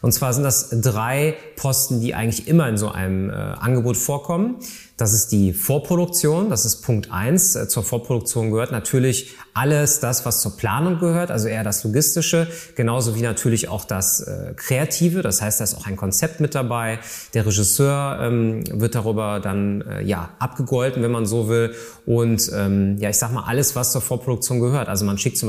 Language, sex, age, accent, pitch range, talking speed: German, male, 30-49, German, 110-135 Hz, 180 wpm